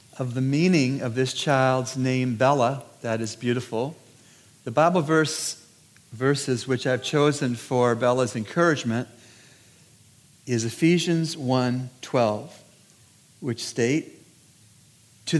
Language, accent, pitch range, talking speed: English, American, 120-150 Hz, 105 wpm